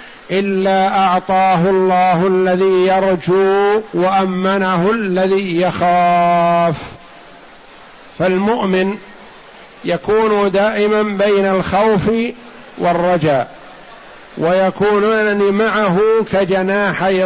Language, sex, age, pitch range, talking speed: Arabic, male, 50-69, 180-210 Hz, 60 wpm